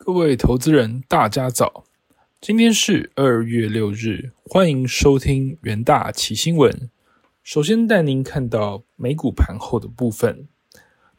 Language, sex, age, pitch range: Chinese, male, 20-39, 115-165 Hz